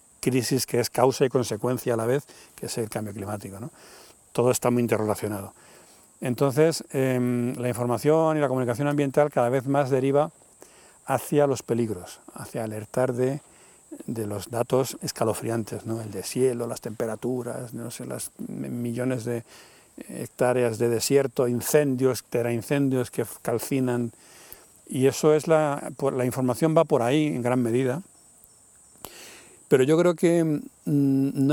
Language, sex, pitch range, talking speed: Spanish, male, 120-145 Hz, 145 wpm